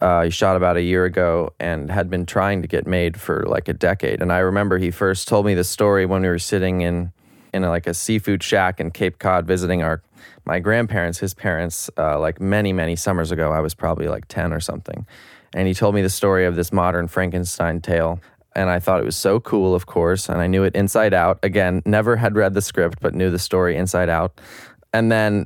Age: 20-39